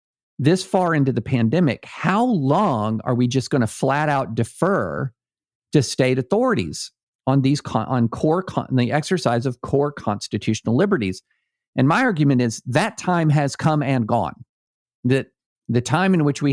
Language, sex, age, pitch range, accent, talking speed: English, male, 50-69, 115-155 Hz, American, 165 wpm